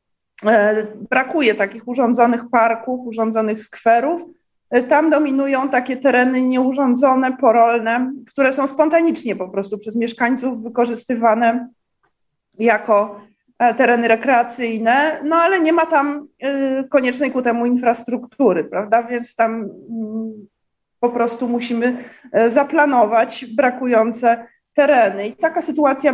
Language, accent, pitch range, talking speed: Polish, native, 230-275 Hz, 100 wpm